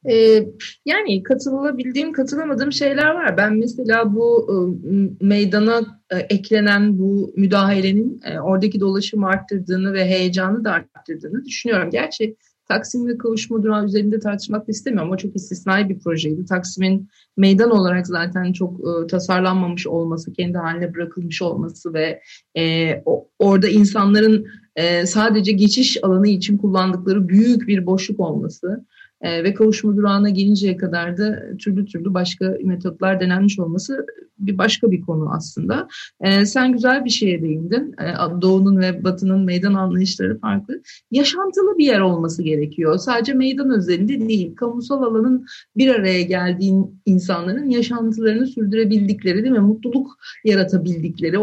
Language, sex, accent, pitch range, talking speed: Turkish, female, native, 185-230 Hz, 125 wpm